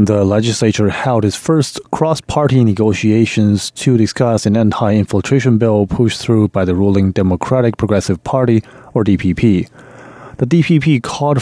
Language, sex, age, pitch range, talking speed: English, male, 30-49, 100-125 Hz, 130 wpm